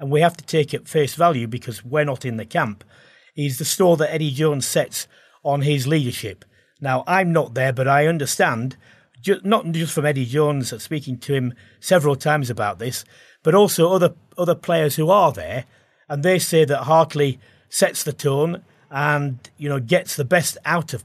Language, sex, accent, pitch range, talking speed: English, male, British, 125-160 Hz, 190 wpm